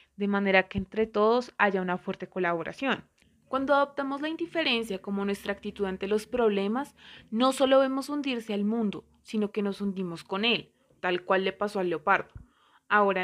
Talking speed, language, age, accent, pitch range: 170 wpm, Spanish, 20-39, Colombian, 200-240 Hz